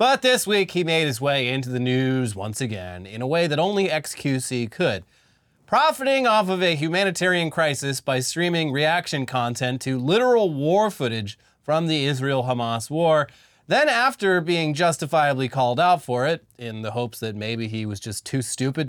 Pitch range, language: 125-165 Hz, English